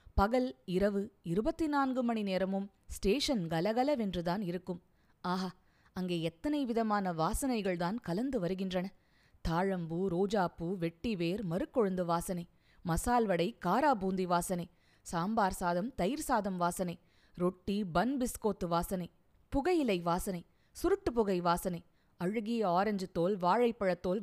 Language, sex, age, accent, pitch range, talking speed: Tamil, female, 20-39, native, 180-240 Hz, 105 wpm